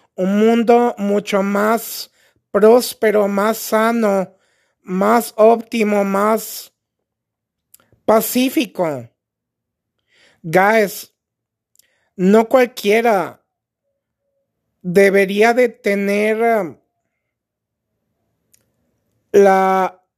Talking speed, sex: 55 wpm, male